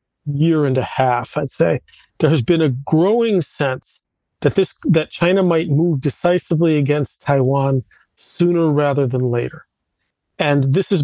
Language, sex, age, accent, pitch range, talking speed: English, male, 40-59, American, 135-165 Hz, 150 wpm